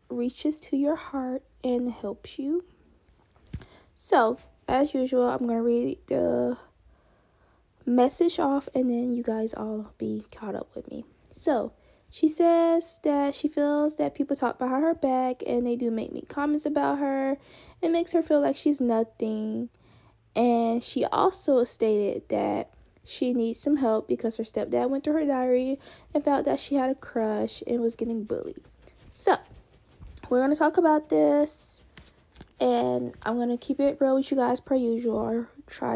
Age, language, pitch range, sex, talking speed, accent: 10-29, English, 220-280 Hz, female, 170 wpm, American